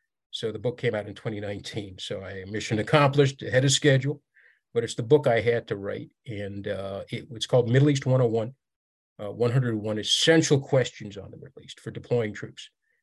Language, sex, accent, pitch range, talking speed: English, male, American, 110-140 Hz, 185 wpm